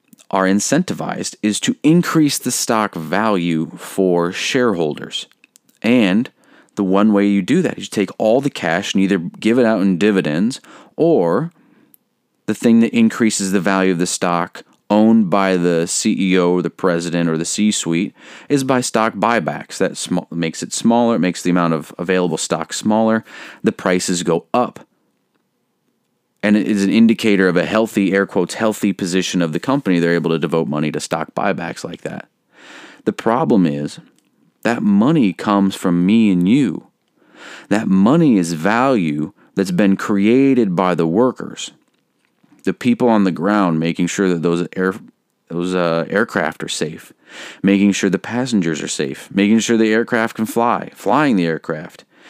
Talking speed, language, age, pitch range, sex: 165 wpm, English, 30-49, 85-115 Hz, male